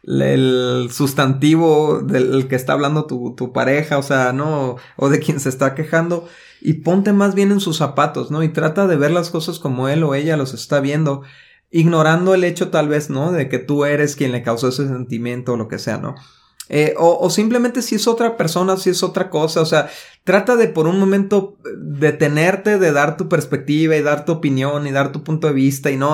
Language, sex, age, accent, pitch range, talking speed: Spanish, male, 30-49, Mexican, 135-160 Hz, 220 wpm